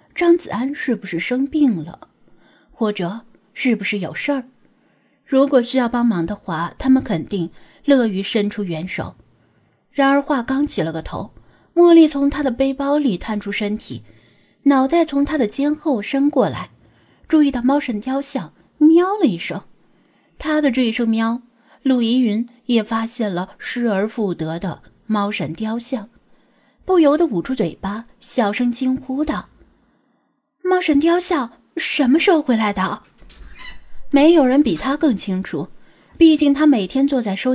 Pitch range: 205-275 Hz